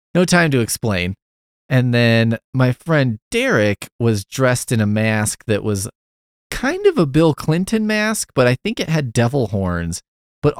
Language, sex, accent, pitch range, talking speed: English, male, American, 95-140 Hz, 170 wpm